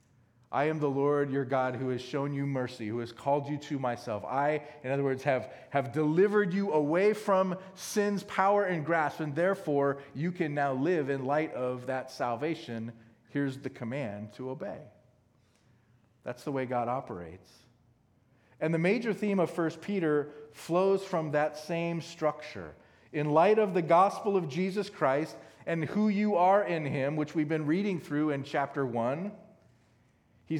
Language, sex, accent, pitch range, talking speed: English, male, American, 130-170 Hz, 170 wpm